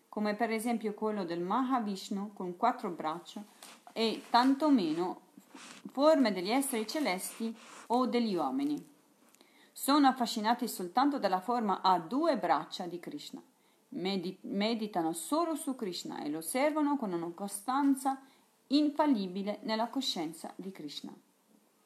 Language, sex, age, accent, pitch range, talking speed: Italian, female, 40-59, native, 195-270 Hz, 120 wpm